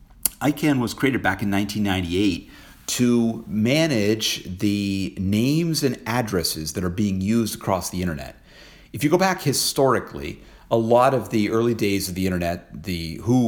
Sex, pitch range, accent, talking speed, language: male, 90-110 Hz, American, 155 wpm, English